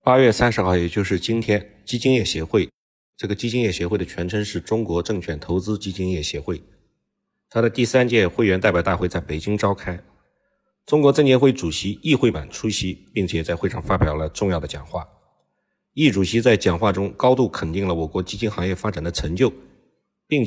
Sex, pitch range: male, 90-115 Hz